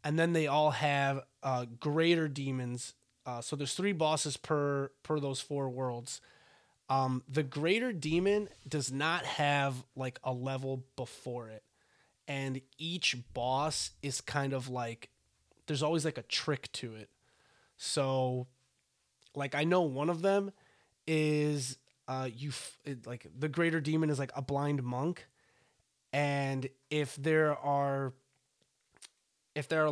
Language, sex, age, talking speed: English, male, 20-39, 140 wpm